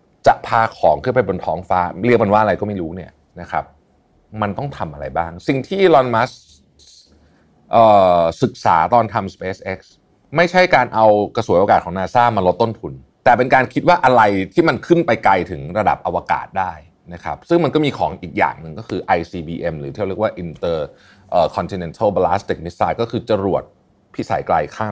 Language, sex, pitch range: Thai, male, 85-120 Hz